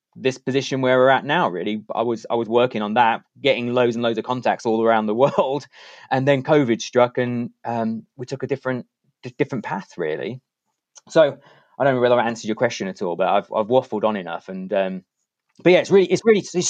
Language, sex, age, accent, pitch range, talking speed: English, male, 30-49, British, 115-145 Hz, 230 wpm